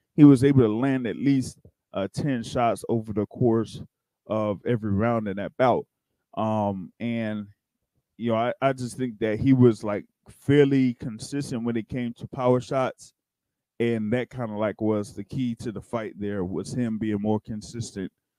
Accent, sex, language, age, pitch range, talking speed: American, male, English, 20-39, 105-130 Hz, 185 wpm